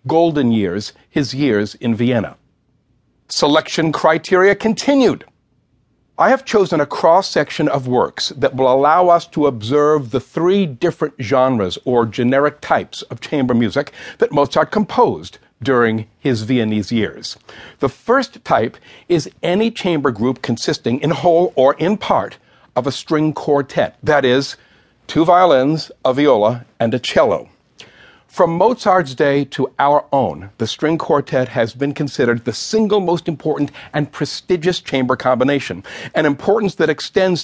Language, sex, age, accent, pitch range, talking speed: English, male, 60-79, American, 125-160 Hz, 145 wpm